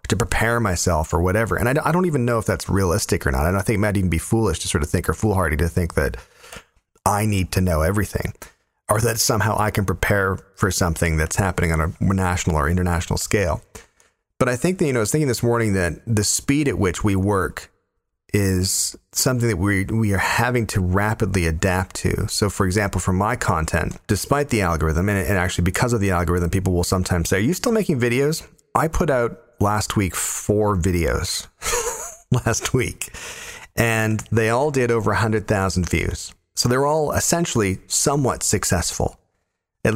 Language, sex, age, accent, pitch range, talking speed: English, male, 40-59, American, 90-115 Hz, 200 wpm